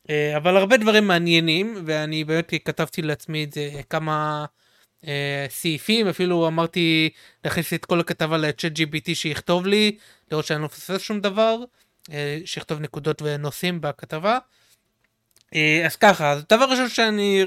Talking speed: 140 wpm